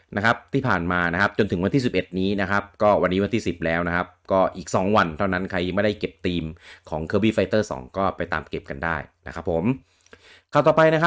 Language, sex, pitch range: English, male, 85-110 Hz